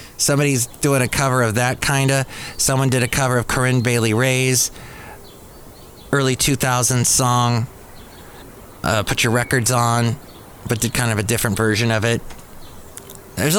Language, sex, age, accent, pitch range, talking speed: English, male, 30-49, American, 115-145 Hz, 150 wpm